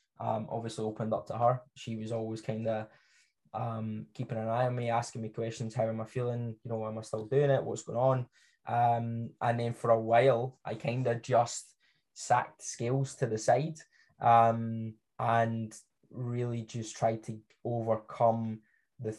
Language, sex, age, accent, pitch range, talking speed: English, male, 10-29, British, 110-125 Hz, 180 wpm